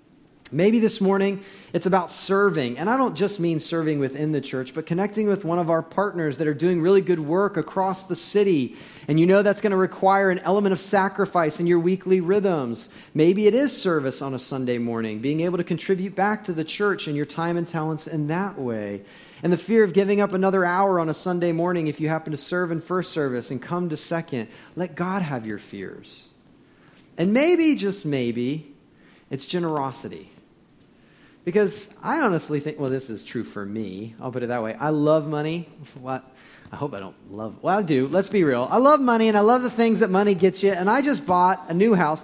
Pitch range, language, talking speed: 155-205 Hz, English, 220 wpm